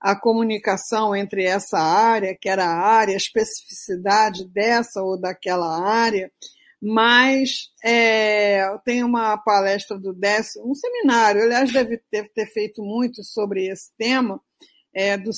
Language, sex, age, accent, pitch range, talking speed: Portuguese, female, 50-69, Brazilian, 210-305 Hz, 130 wpm